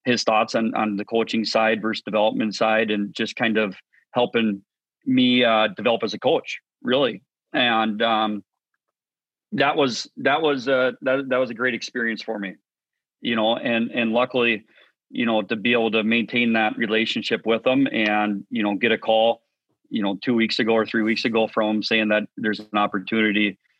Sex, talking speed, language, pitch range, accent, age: male, 185 wpm, English, 105-115 Hz, American, 30-49